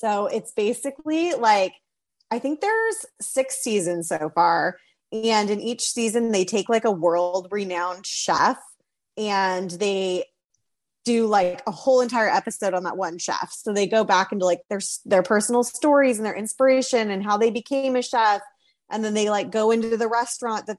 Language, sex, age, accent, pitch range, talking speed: English, female, 20-39, American, 185-230 Hz, 180 wpm